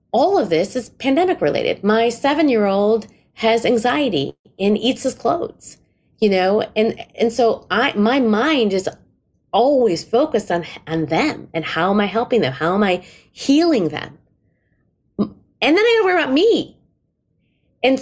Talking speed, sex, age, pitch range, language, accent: 155 wpm, female, 30-49, 190-235 Hz, English, American